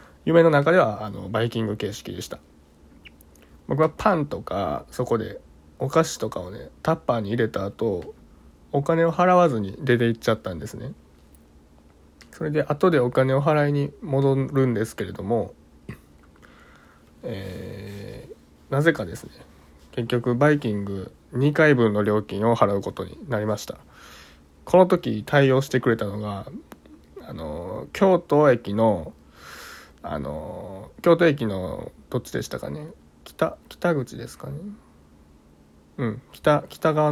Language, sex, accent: Japanese, male, native